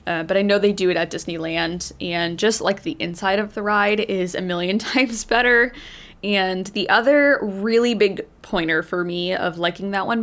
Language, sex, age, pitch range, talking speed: English, female, 20-39, 180-230 Hz, 200 wpm